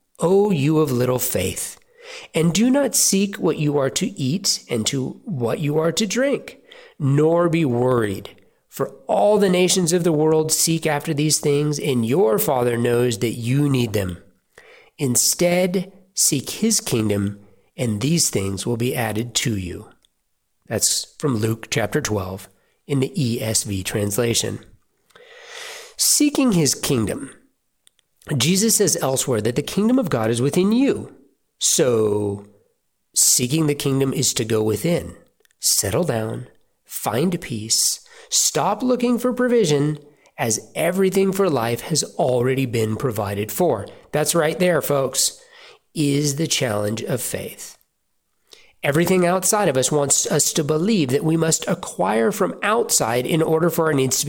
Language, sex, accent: English, male, American